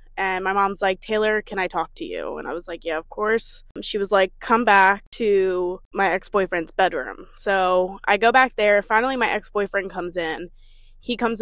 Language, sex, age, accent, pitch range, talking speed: English, female, 20-39, American, 185-220 Hz, 200 wpm